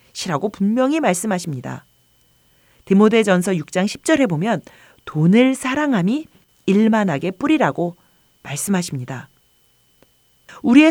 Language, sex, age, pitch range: Korean, female, 40-59, 165-260 Hz